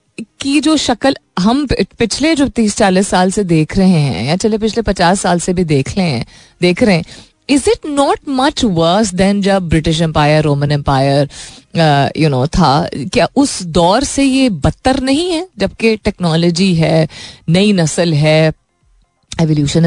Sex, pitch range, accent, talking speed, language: female, 160-235 Hz, native, 155 wpm, Hindi